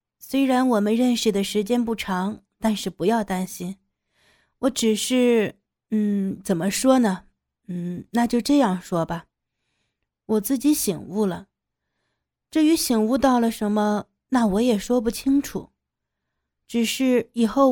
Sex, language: female, Chinese